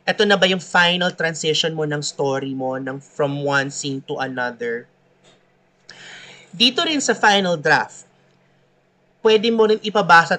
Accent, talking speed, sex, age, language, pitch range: Filipino, 145 wpm, male, 30-49, English, 150-210 Hz